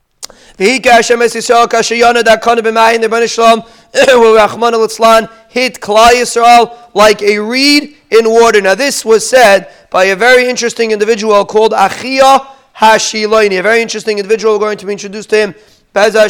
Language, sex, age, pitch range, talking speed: English, male, 30-49, 215-255 Hz, 110 wpm